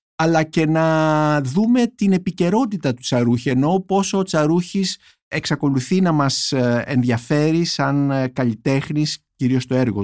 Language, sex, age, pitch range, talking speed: Greek, male, 50-69, 120-160 Hz, 125 wpm